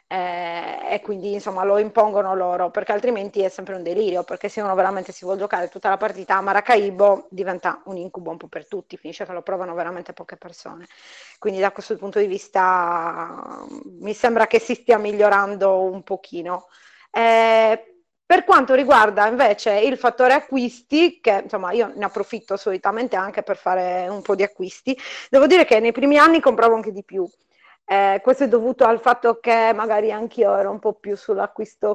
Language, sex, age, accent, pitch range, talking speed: Italian, female, 30-49, native, 190-230 Hz, 185 wpm